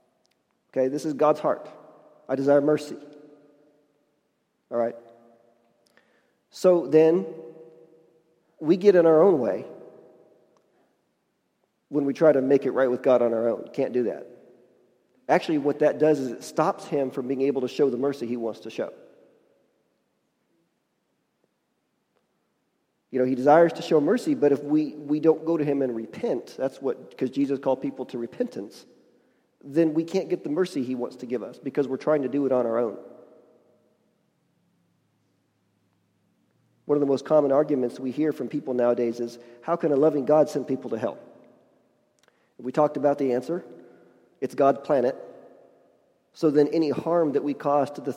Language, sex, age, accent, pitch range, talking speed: English, male, 40-59, American, 125-155 Hz, 165 wpm